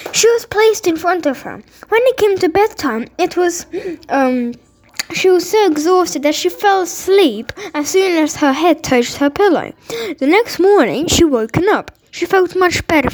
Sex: female